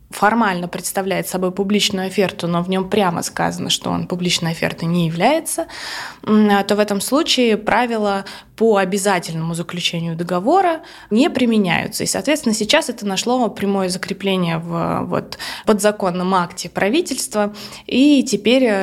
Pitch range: 185-225 Hz